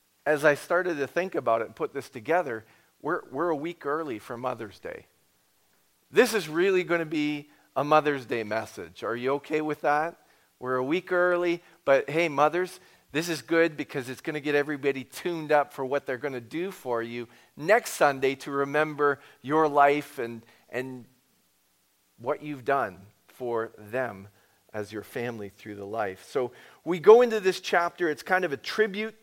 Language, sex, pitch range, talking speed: English, male, 120-165 Hz, 185 wpm